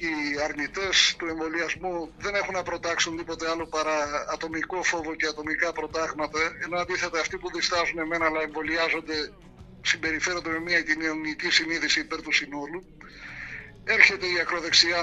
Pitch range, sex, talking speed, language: 160-185 Hz, male, 140 wpm, Greek